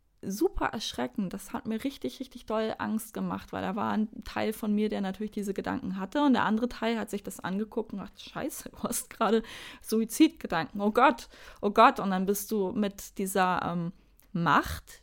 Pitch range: 200-245 Hz